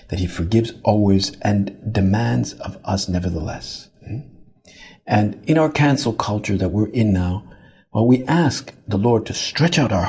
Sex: male